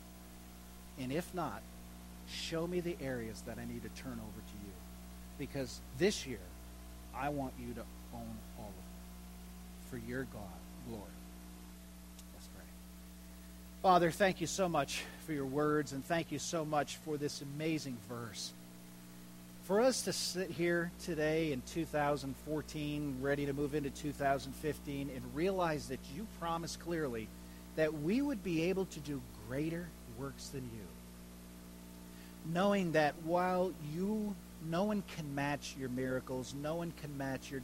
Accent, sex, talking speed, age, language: American, male, 150 wpm, 40-59, English